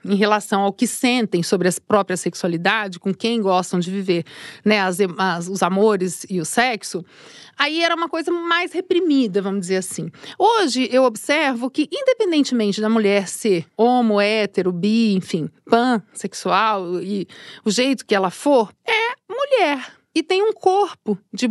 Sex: female